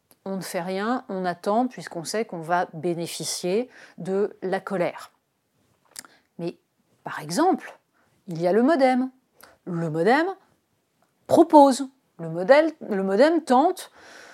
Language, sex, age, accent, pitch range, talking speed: French, female, 30-49, French, 175-255 Hz, 120 wpm